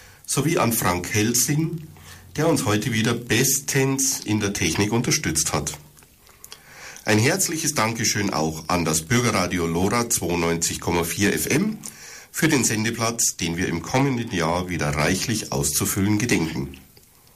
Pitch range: 90-125 Hz